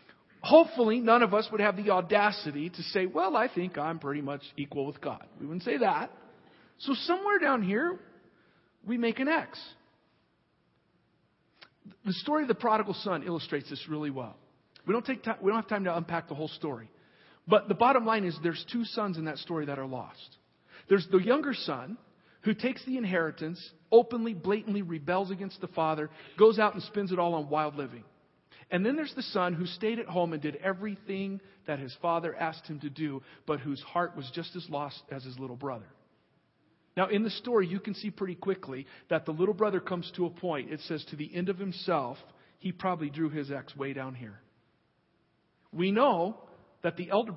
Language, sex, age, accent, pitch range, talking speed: English, male, 40-59, American, 150-205 Hz, 200 wpm